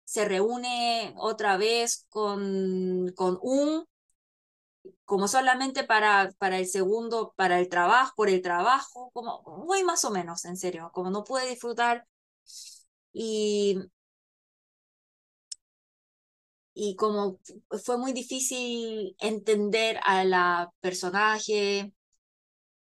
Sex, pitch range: female, 195-280 Hz